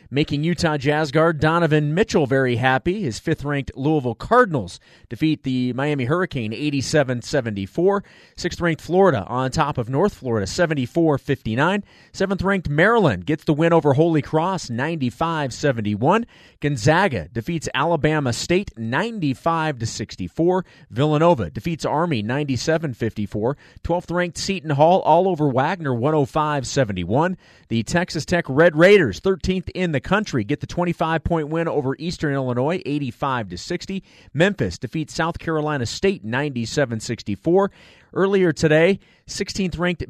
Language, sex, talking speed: English, male, 120 wpm